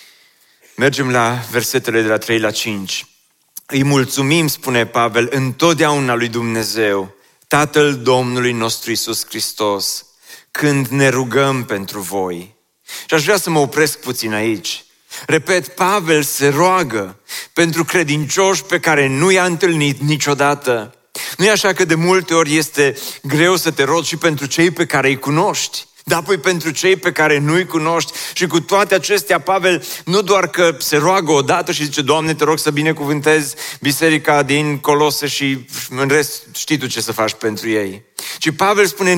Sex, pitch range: male, 140-175 Hz